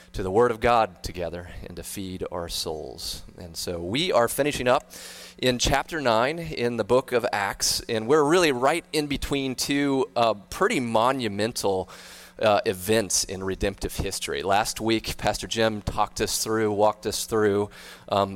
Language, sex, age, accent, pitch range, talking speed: English, male, 30-49, American, 95-125 Hz, 165 wpm